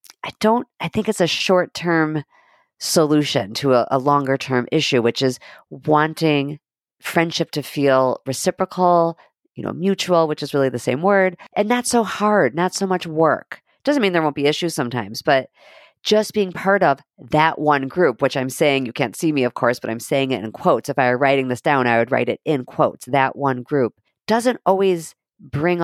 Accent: American